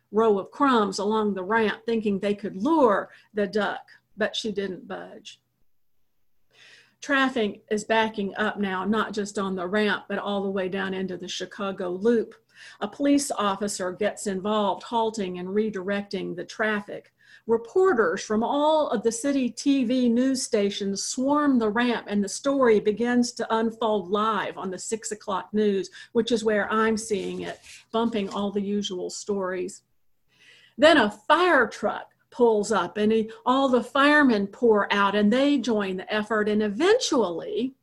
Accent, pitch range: American, 200-245 Hz